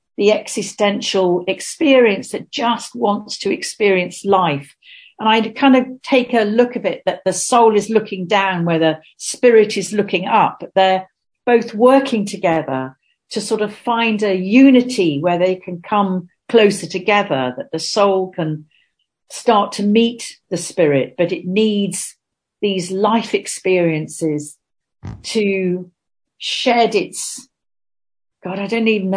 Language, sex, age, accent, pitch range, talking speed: English, female, 50-69, British, 170-230 Hz, 140 wpm